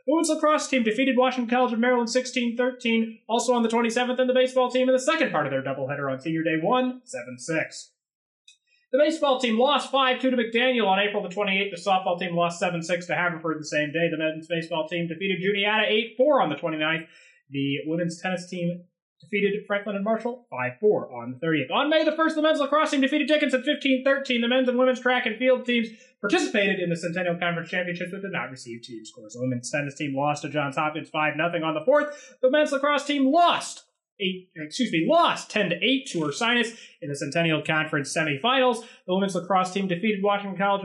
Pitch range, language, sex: 165-255 Hz, English, male